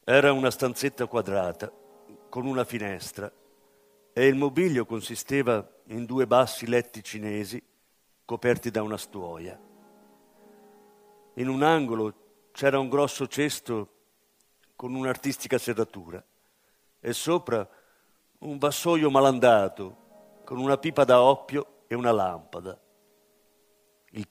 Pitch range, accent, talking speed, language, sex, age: 105-135 Hz, native, 110 wpm, Italian, male, 50-69